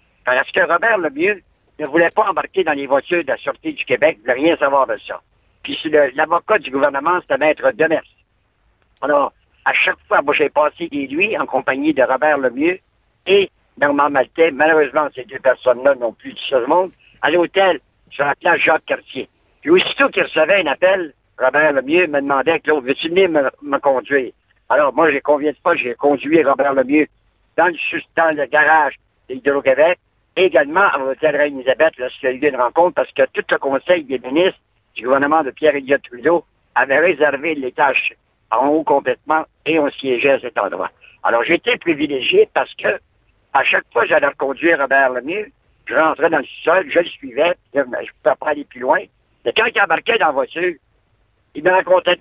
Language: French